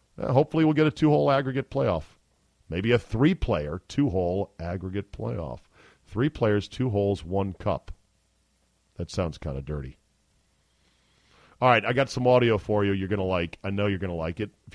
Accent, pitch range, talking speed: American, 95-130 Hz, 180 wpm